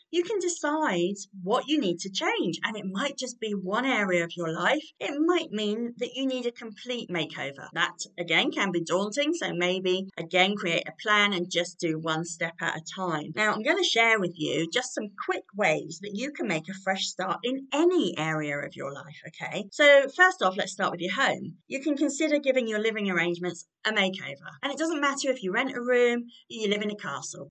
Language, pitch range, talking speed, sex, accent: English, 185-295 Hz, 225 wpm, female, British